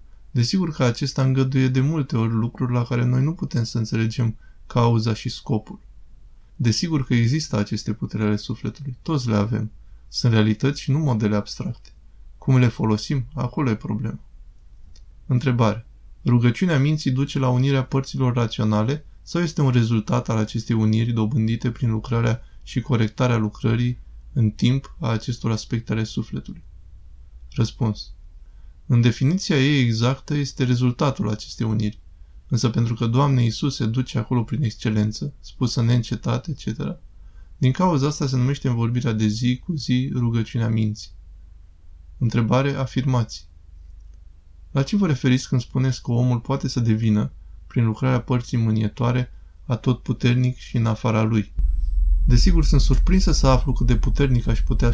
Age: 20-39